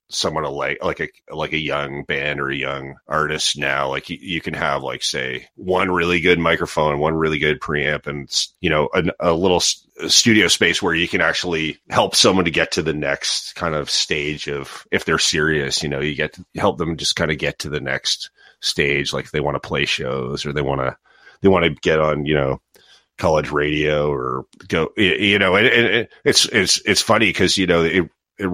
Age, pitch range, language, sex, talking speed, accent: 30-49, 75-85 Hz, English, male, 225 wpm, American